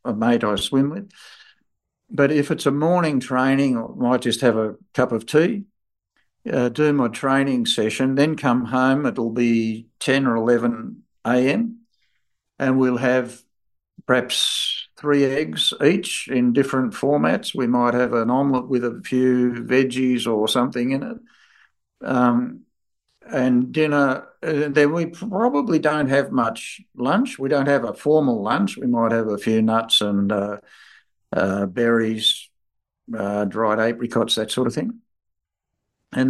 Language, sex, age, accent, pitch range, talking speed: English, male, 60-79, Australian, 115-145 Hz, 150 wpm